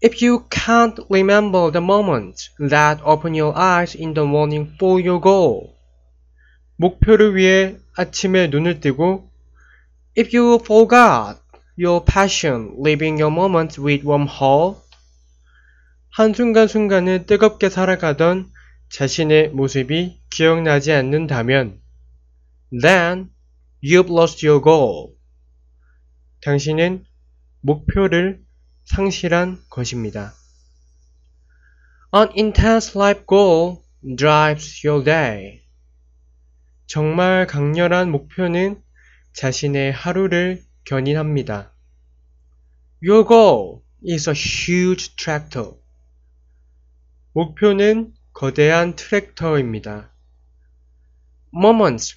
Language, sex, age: Korean, male, 20-39